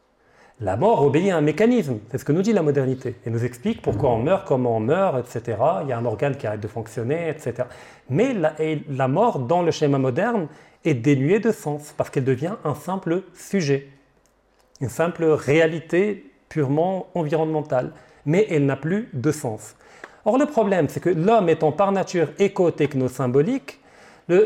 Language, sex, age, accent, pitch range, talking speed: French, male, 40-59, French, 145-210 Hz, 180 wpm